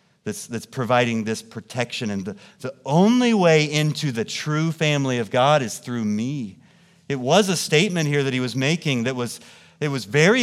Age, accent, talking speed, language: 40-59, American, 190 wpm, English